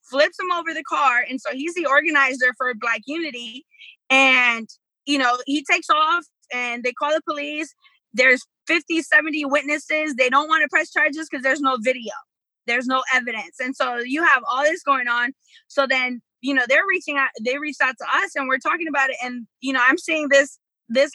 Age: 20-39